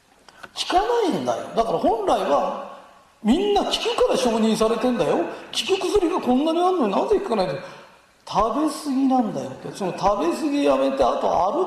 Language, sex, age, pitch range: Japanese, male, 40-59, 195-315 Hz